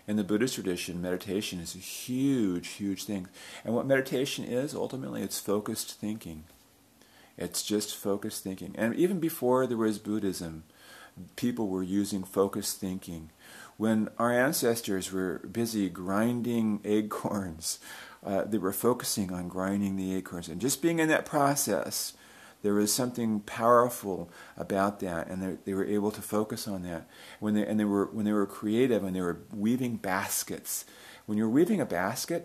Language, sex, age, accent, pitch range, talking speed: English, male, 40-59, American, 95-115 Hz, 160 wpm